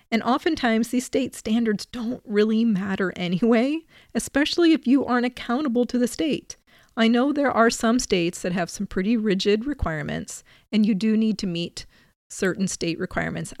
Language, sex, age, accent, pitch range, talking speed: English, female, 40-59, American, 190-235 Hz, 170 wpm